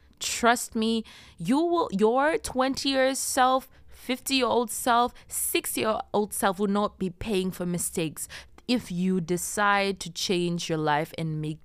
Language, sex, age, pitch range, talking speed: English, female, 20-39, 165-225 Hz, 165 wpm